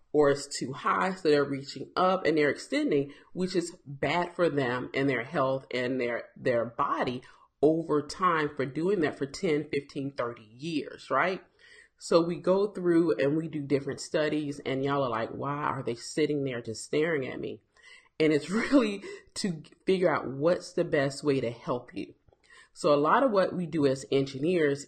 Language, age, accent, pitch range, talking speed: English, 40-59, American, 140-180 Hz, 190 wpm